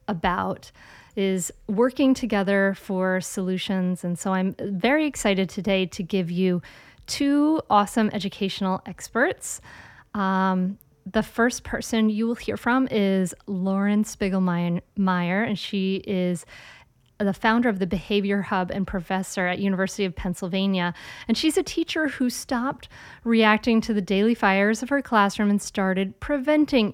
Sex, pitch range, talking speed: female, 190-235 Hz, 140 wpm